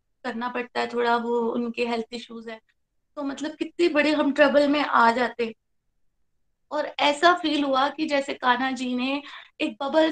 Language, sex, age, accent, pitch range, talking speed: Hindi, female, 20-39, native, 235-290 Hz, 180 wpm